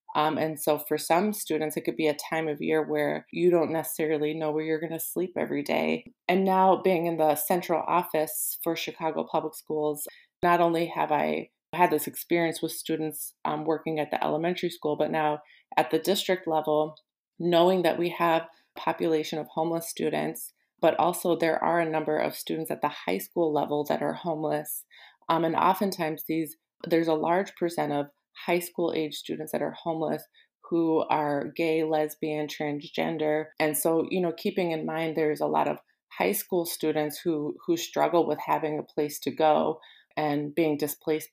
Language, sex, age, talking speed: English, female, 20-39, 185 wpm